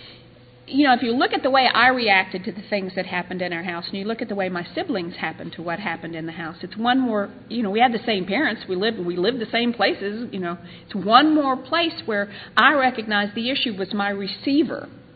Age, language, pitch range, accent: 50-69, English, 190-255 Hz, American